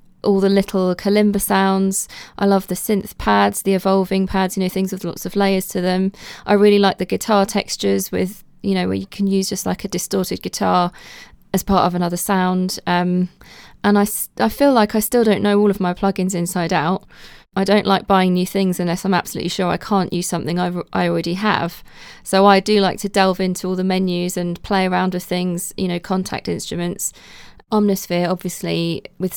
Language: English